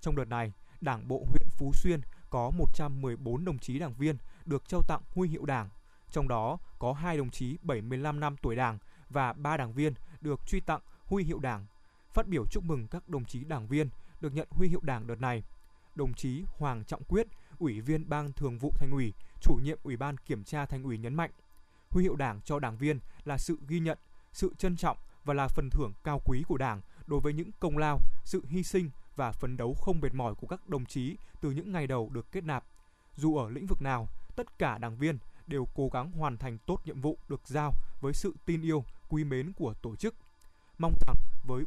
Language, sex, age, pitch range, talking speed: Vietnamese, male, 20-39, 125-165 Hz, 225 wpm